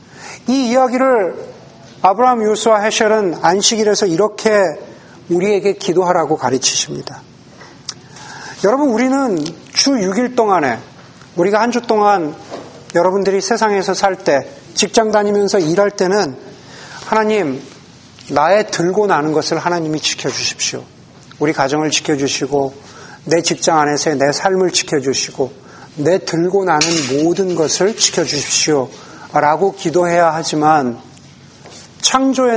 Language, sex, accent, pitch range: Korean, male, native, 150-215 Hz